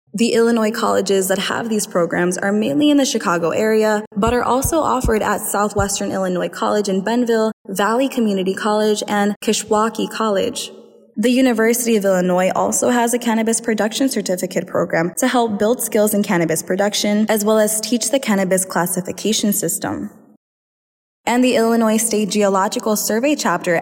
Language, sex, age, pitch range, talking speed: English, female, 20-39, 190-235 Hz, 155 wpm